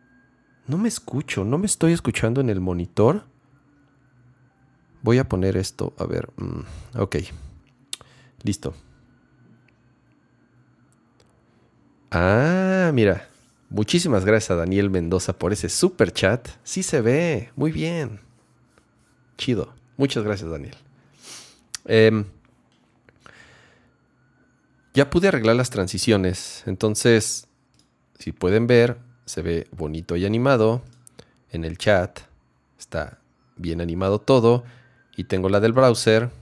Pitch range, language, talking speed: 95-125 Hz, Spanish, 105 wpm